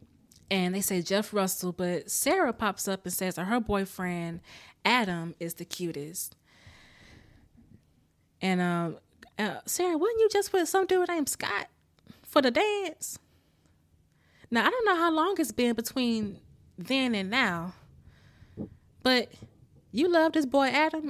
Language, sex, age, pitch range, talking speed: English, female, 20-39, 165-220 Hz, 145 wpm